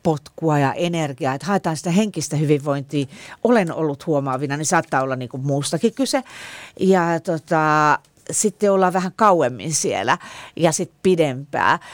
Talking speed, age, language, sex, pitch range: 140 wpm, 40-59, Finnish, female, 150-230 Hz